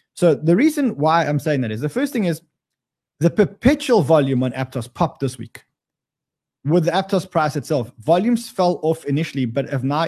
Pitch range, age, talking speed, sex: 140-185 Hz, 20-39, 190 wpm, male